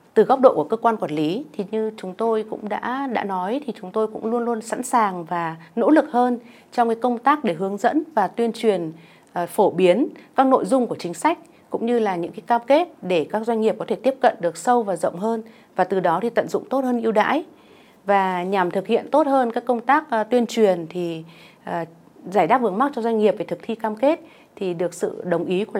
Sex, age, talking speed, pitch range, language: female, 30-49, 245 wpm, 185-245 Hz, Vietnamese